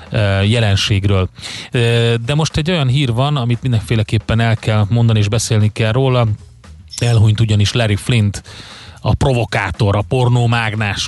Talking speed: 135 wpm